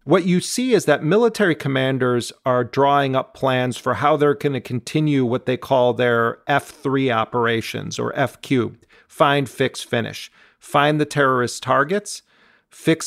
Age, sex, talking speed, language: 40-59, male, 150 wpm, English